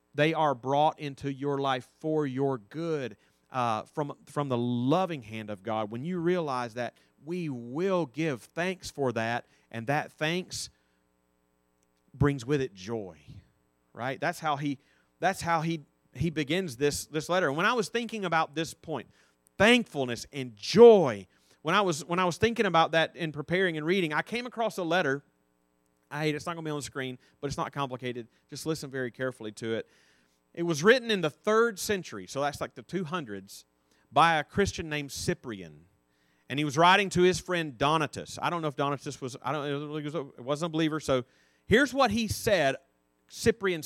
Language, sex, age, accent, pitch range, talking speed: English, male, 30-49, American, 110-165 Hz, 190 wpm